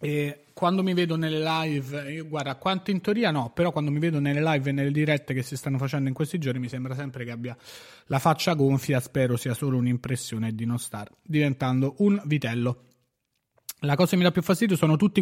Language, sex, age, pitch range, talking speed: Italian, male, 30-49, 130-160 Hz, 215 wpm